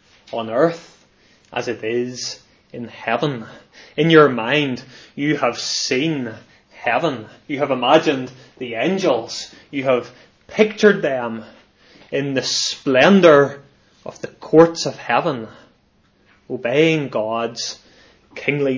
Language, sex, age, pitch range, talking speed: English, male, 20-39, 115-155 Hz, 110 wpm